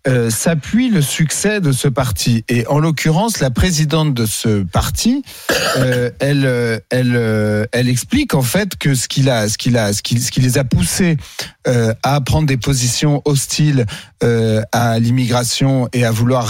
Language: French